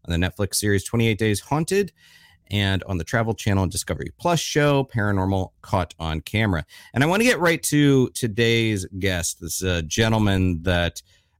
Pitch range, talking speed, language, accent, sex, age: 95-130 Hz, 165 wpm, English, American, male, 40-59